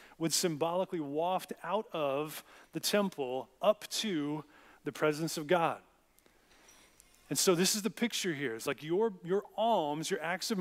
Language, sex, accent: English, male, American